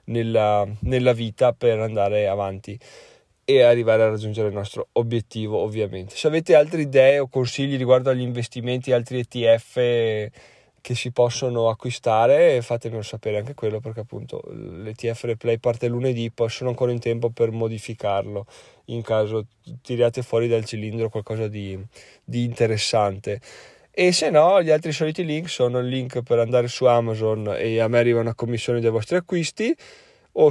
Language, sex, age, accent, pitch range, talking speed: Italian, male, 20-39, native, 110-135 Hz, 155 wpm